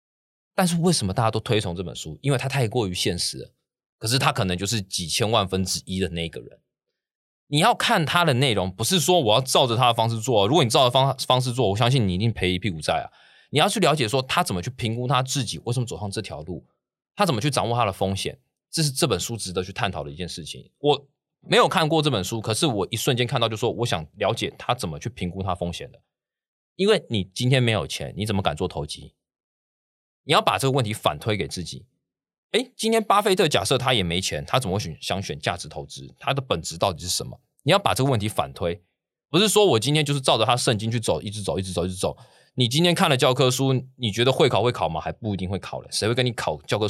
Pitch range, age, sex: 95-135 Hz, 20-39, male